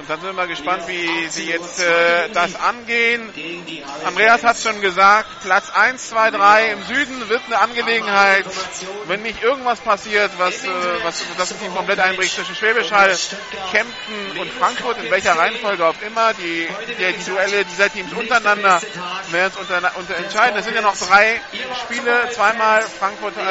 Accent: German